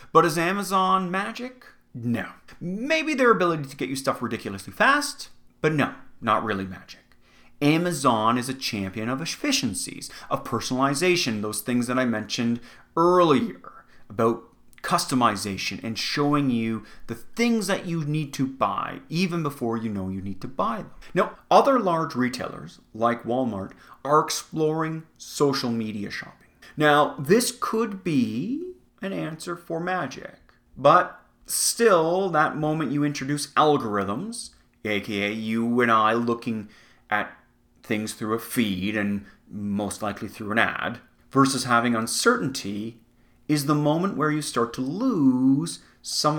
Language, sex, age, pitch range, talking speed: English, male, 30-49, 115-165 Hz, 140 wpm